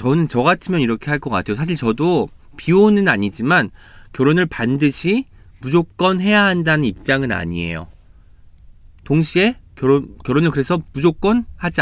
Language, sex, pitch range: Korean, male, 110-170 Hz